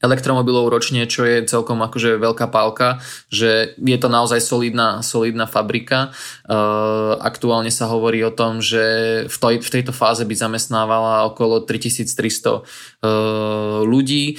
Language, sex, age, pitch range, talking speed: Slovak, male, 20-39, 110-115 Hz, 140 wpm